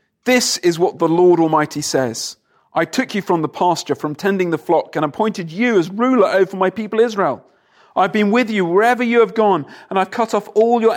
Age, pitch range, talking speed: 40-59, 155-205 Hz, 220 wpm